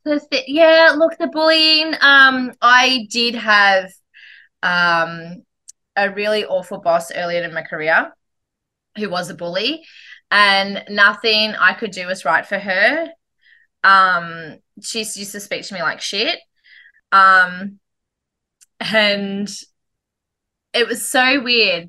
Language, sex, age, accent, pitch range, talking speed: English, female, 20-39, Australian, 185-245 Hz, 125 wpm